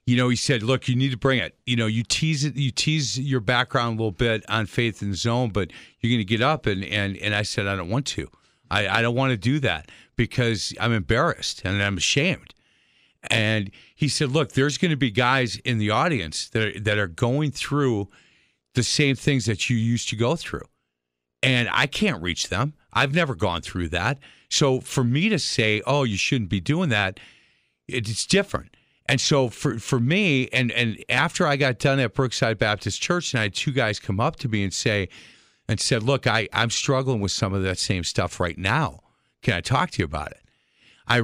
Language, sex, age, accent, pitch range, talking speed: English, male, 50-69, American, 105-135 Hz, 225 wpm